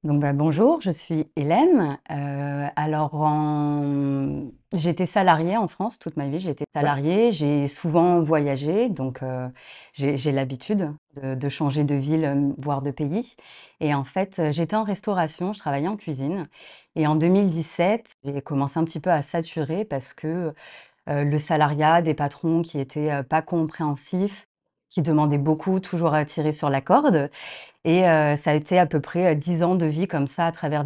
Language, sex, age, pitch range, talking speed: French, female, 30-49, 145-175 Hz, 175 wpm